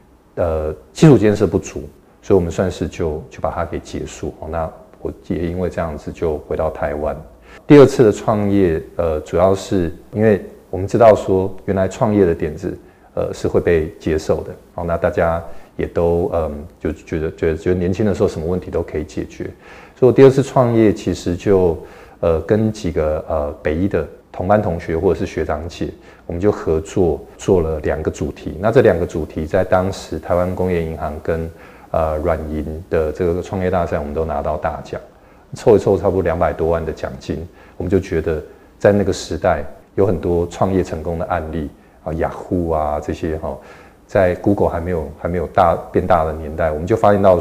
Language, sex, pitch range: Chinese, male, 80-100 Hz